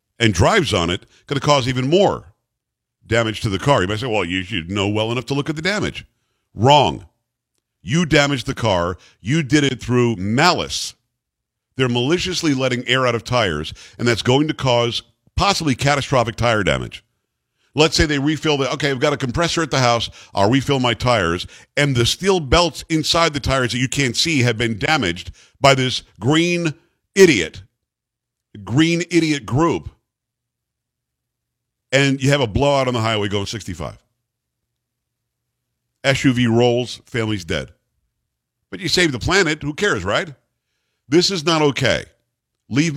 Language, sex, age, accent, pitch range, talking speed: English, male, 50-69, American, 115-145 Hz, 165 wpm